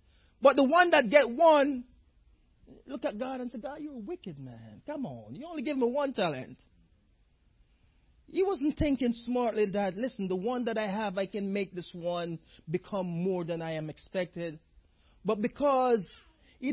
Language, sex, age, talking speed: English, male, 30-49, 175 wpm